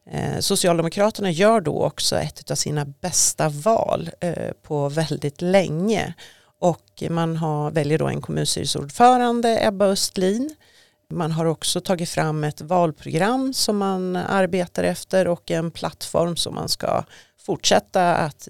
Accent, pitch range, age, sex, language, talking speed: native, 155-195 Hz, 40-59, female, Swedish, 130 wpm